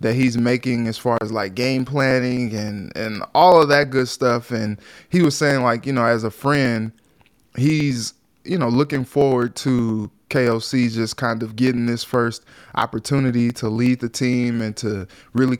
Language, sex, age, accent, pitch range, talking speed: English, male, 20-39, American, 115-135 Hz, 180 wpm